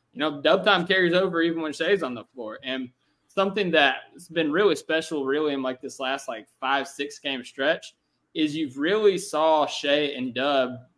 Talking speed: 190 wpm